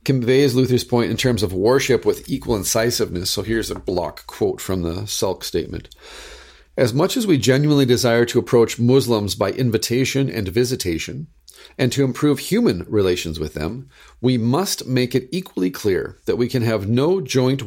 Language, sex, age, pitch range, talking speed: English, male, 40-59, 90-130 Hz, 175 wpm